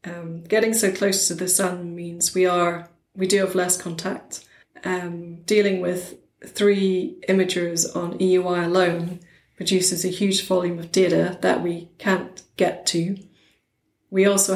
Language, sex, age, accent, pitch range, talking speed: English, female, 30-49, British, 180-190 Hz, 150 wpm